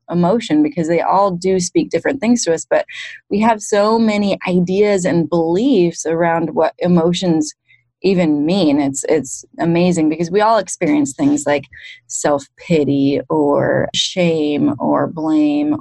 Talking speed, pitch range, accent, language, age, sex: 140 wpm, 155-195 Hz, American, English, 30-49, female